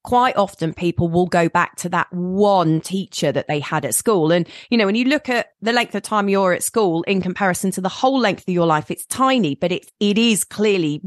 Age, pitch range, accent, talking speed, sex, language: 30-49, 165-200 Hz, British, 245 wpm, female, English